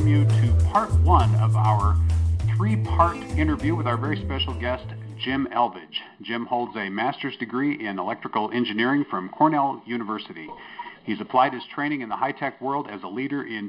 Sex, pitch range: male, 110-145 Hz